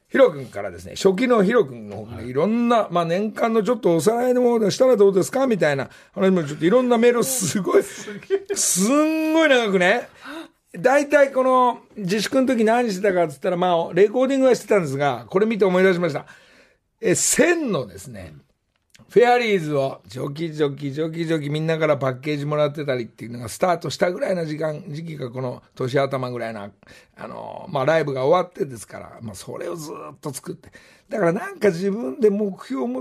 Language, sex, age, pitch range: Japanese, male, 60-79, 150-225 Hz